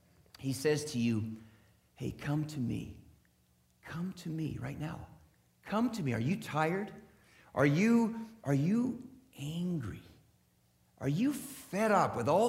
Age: 50-69